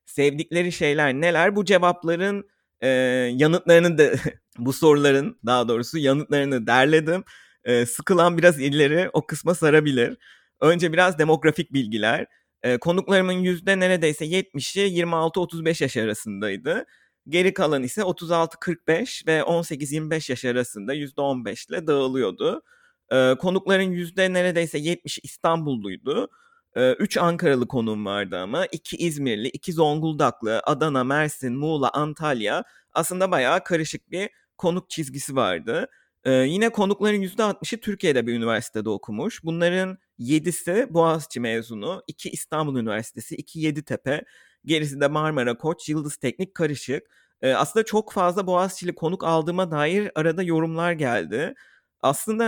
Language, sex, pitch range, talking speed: Turkish, male, 135-185 Hz, 120 wpm